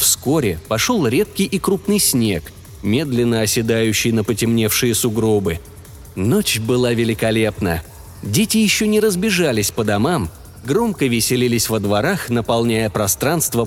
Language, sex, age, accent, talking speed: Russian, male, 30-49, native, 115 wpm